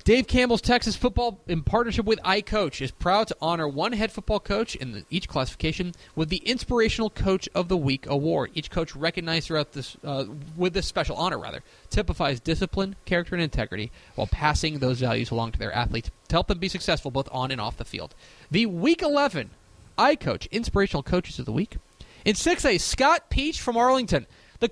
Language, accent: English, American